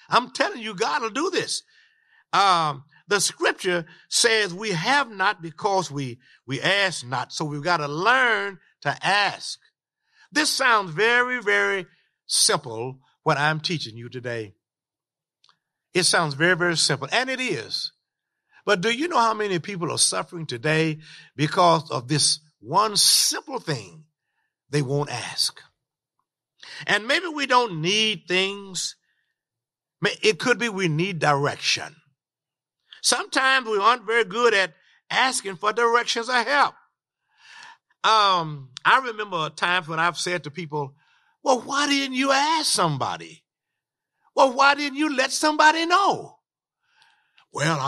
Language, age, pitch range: English, 50-69, 155-235 Hz